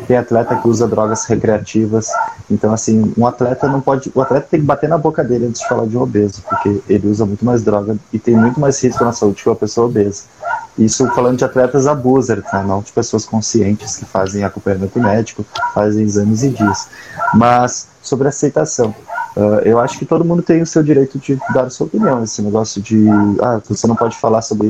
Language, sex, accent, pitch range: Portuguese, male, Brazilian, 110-140 Hz